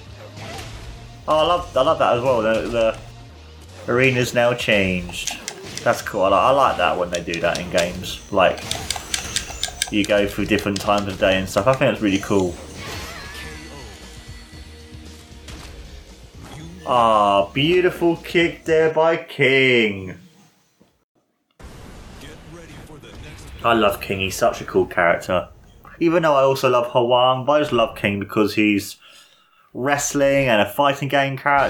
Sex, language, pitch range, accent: male, English, 95-130 Hz, British